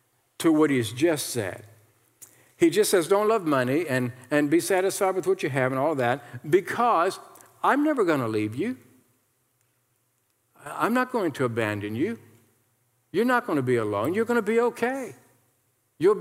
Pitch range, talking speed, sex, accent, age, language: 125-200 Hz, 180 wpm, male, American, 60-79, English